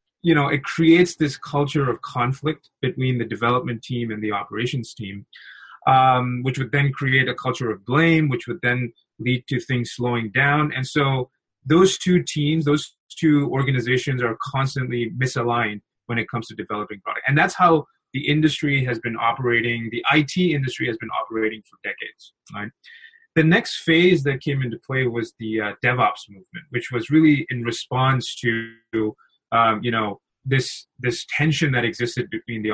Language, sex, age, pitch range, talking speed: English, male, 20-39, 115-150 Hz, 175 wpm